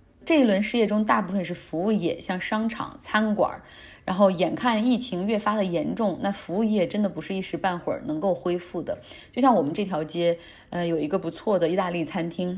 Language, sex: Chinese, female